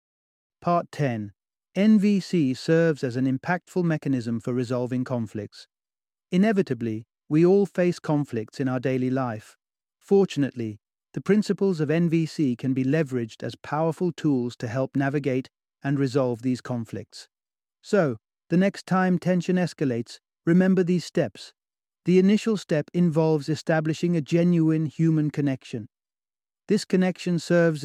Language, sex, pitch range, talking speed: English, male, 130-165 Hz, 125 wpm